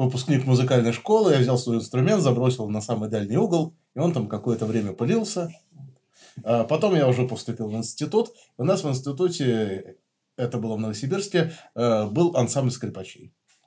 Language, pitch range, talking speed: Russian, 105-140 Hz, 155 wpm